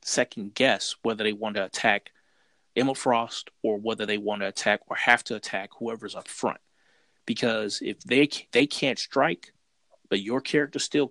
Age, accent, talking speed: 30-49, American, 175 wpm